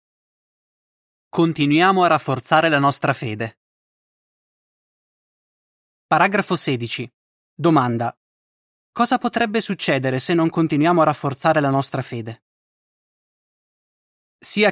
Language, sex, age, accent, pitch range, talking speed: Italian, male, 20-39, native, 135-180 Hz, 85 wpm